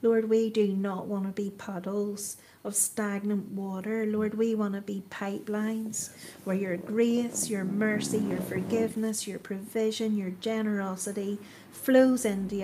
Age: 40-59